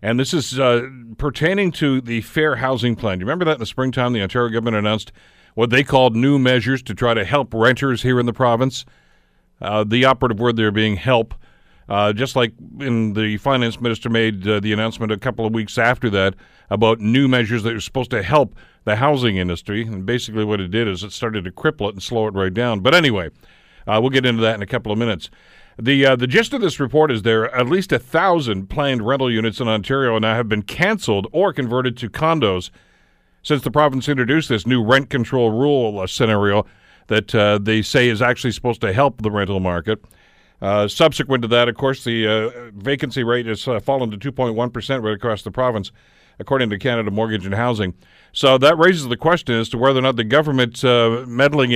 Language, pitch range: English, 110-130 Hz